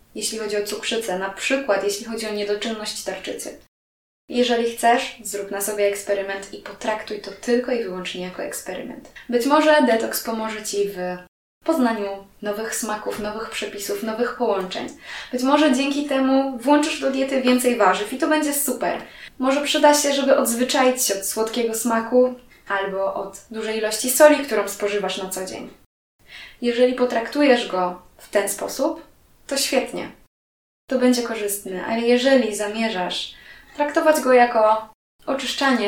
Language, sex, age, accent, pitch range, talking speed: Polish, female, 20-39, native, 200-260 Hz, 145 wpm